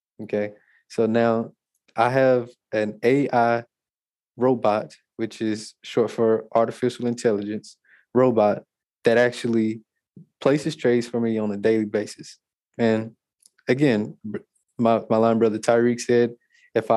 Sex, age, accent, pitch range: male, 20-39, American, 110-125 Hz